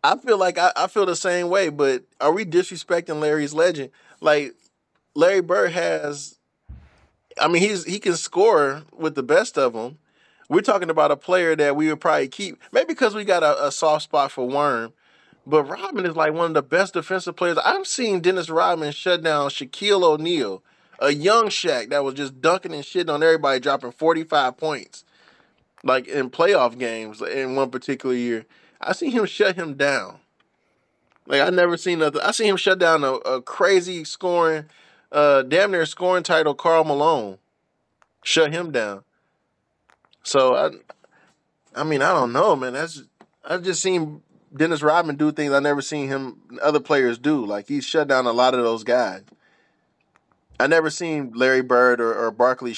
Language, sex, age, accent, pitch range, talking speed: English, male, 20-39, American, 135-175 Hz, 180 wpm